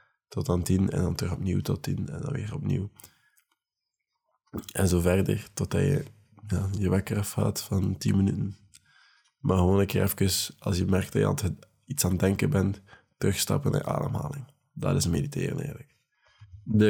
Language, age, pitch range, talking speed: Dutch, 20-39, 95-110 Hz, 175 wpm